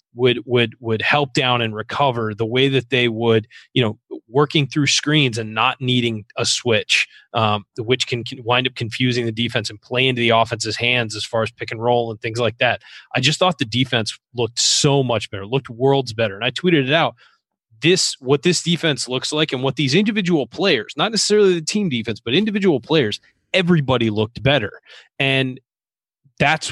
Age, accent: 30-49, American